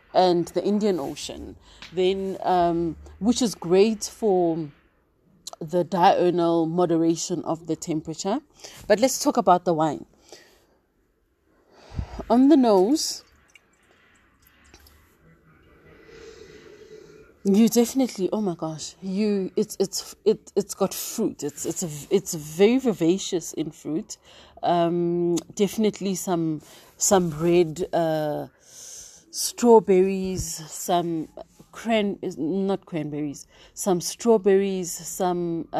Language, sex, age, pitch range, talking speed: English, female, 30-49, 170-205 Hz, 95 wpm